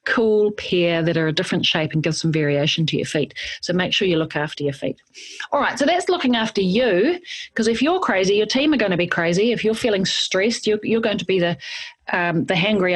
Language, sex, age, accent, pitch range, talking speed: English, female, 40-59, Australian, 165-215 Hz, 240 wpm